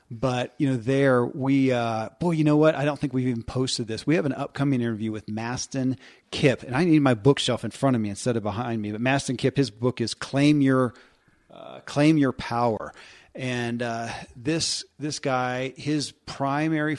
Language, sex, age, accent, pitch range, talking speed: English, male, 40-59, American, 120-140 Hz, 200 wpm